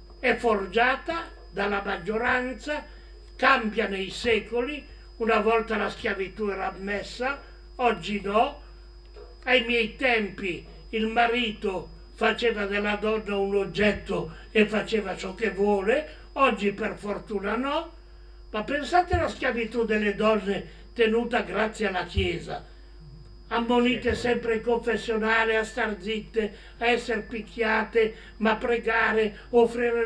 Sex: male